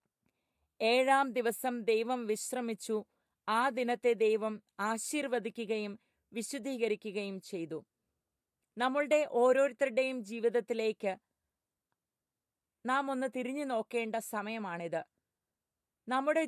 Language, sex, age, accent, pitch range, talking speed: English, female, 30-49, Indian, 220-260 Hz, 60 wpm